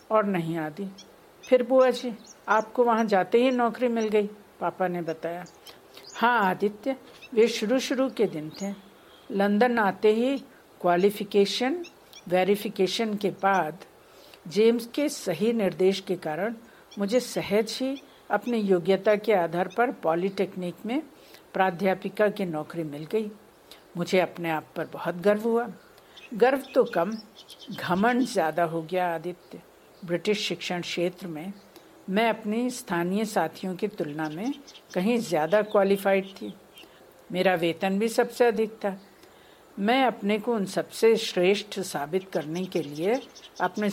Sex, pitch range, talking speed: female, 180-235 Hz, 135 wpm